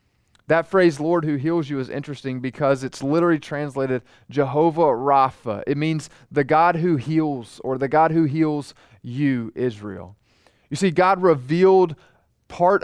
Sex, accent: male, American